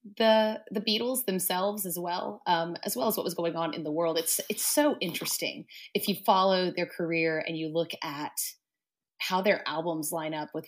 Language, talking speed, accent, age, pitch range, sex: English, 200 wpm, American, 30-49, 160-195 Hz, female